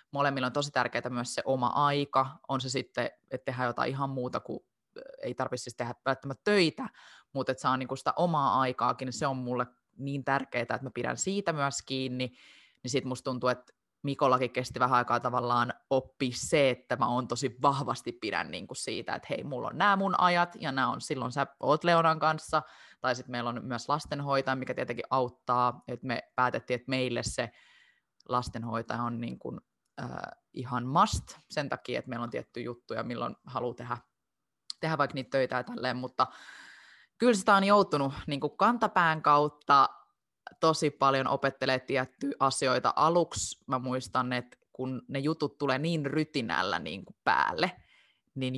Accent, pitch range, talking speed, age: native, 125-155 Hz, 175 wpm, 20-39